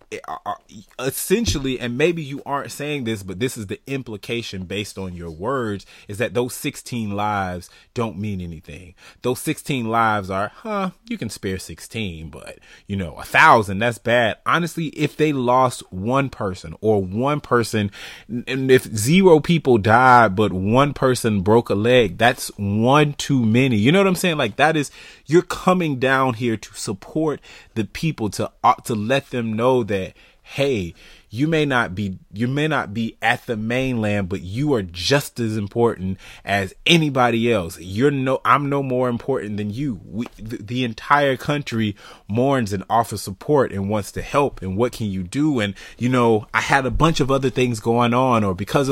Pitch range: 105-140 Hz